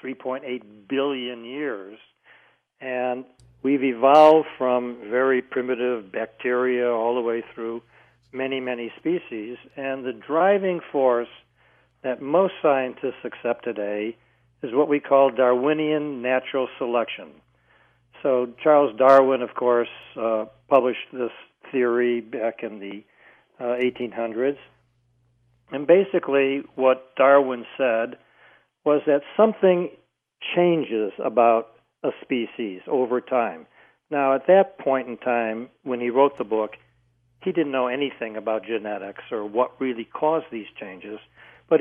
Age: 60-79